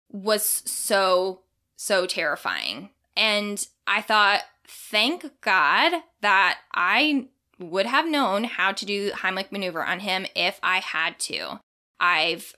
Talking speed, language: 125 wpm, English